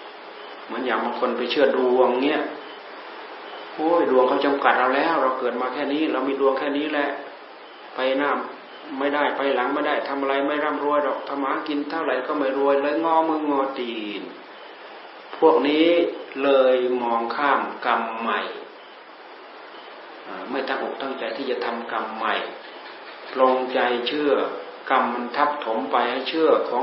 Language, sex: Thai, male